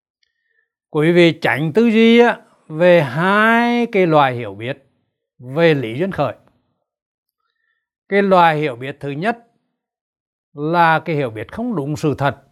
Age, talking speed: 60-79, 140 wpm